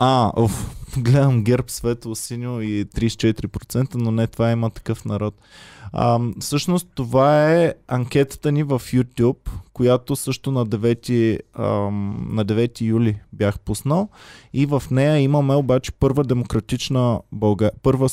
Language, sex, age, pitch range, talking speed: Bulgarian, male, 20-39, 115-140 Hz, 130 wpm